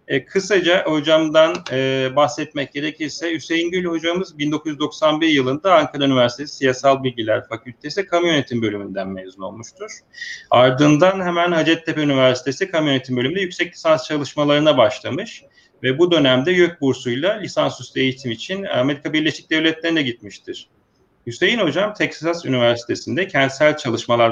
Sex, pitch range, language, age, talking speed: male, 125-165 Hz, Turkish, 40-59, 125 wpm